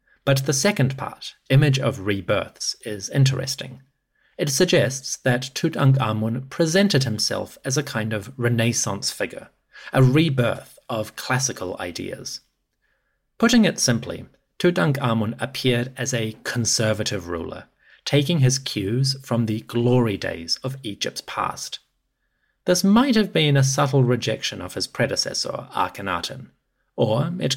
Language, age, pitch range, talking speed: English, 30-49, 115-140 Hz, 125 wpm